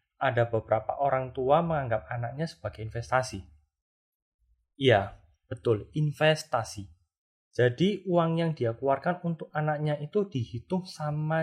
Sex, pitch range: male, 110-150 Hz